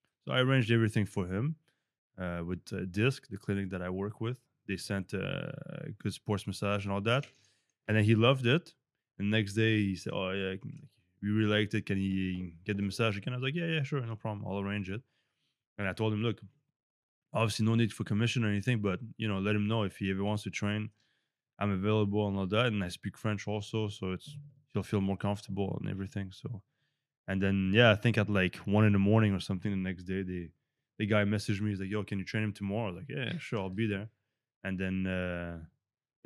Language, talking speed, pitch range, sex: English, 235 wpm, 95-115 Hz, male